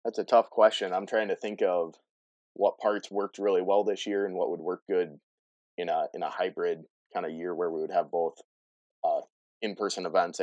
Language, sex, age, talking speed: English, male, 20-39, 220 wpm